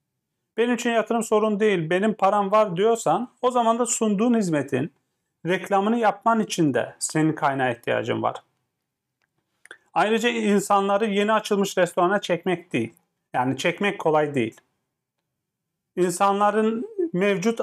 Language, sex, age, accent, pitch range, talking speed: Turkish, male, 40-59, native, 175-225 Hz, 120 wpm